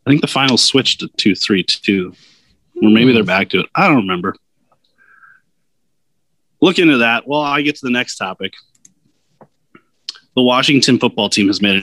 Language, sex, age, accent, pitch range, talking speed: English, male, 30-49, American, 105-120 Hz, 170 wpm